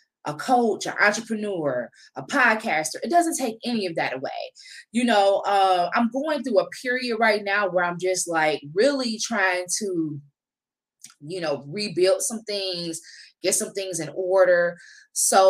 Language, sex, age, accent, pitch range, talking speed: English, female, 20-39, American, 175-230 Hz, 160 wpm